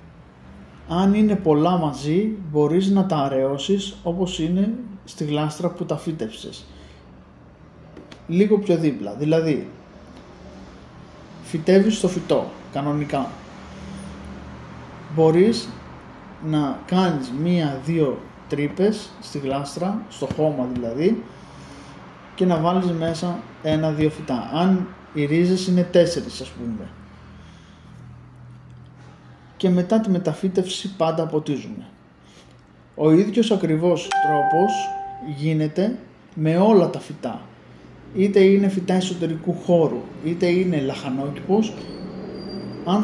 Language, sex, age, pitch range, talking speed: Greek, male, 20-39, 145-185 Hz, 100 wpm